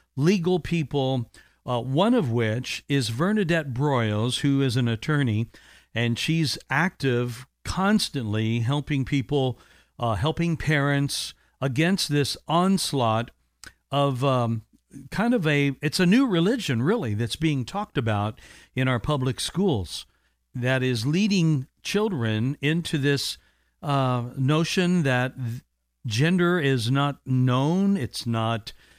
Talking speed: 120 wpm